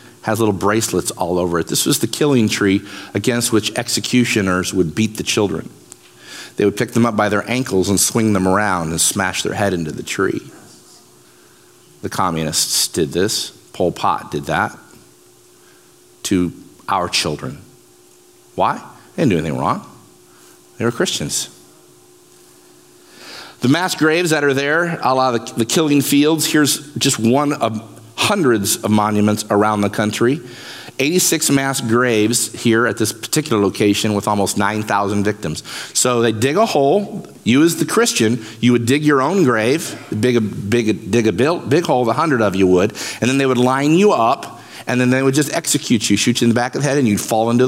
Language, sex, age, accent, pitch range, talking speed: English, male, 50-69, American, 100-130 Hz, 180 wpm